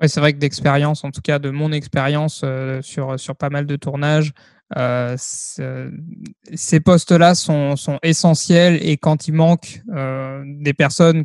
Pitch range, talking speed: 140-165 Hz, 170 wpm